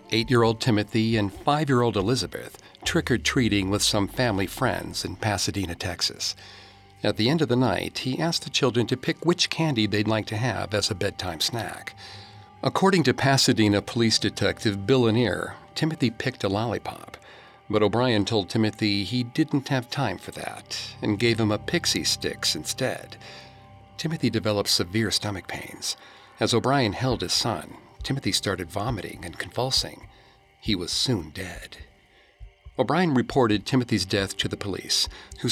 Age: 50-69